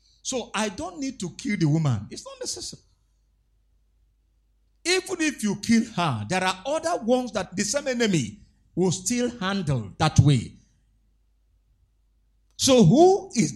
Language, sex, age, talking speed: English, male, 50-69, 140 wpm